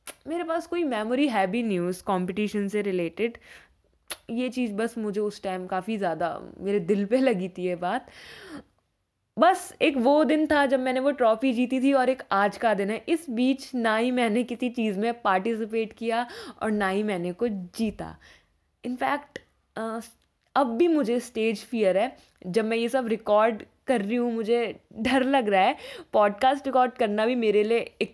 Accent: native